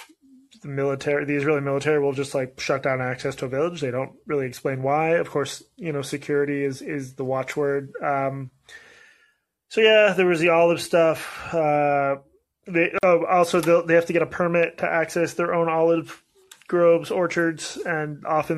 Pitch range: 140-170 Hz